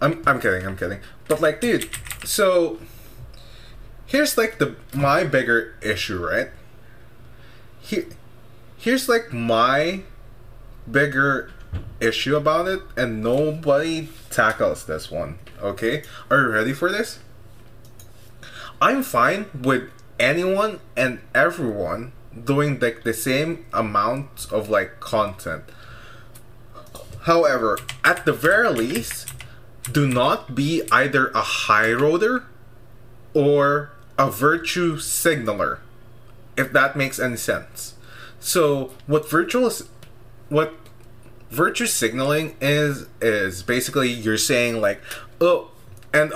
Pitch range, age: 115-145 Hz, 20-39